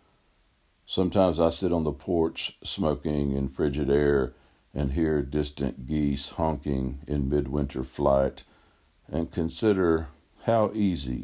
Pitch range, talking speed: 65-80 Hz, 115 wpm